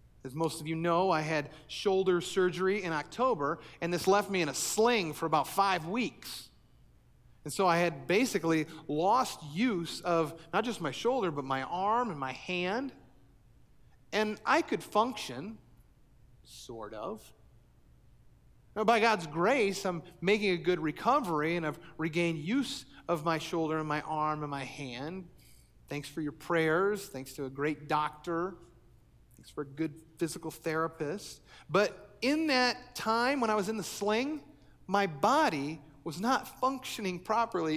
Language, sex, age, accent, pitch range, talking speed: English, male, 40-59, American, 150-200 Hz, 155 wpm